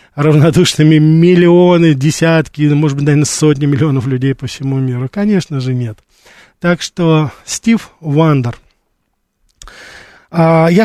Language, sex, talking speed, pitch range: Russian, male, 110 wpm, 140-175 Hz